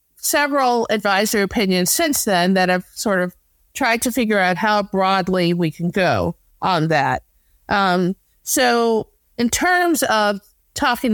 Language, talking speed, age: English, 140 wpm, 50-69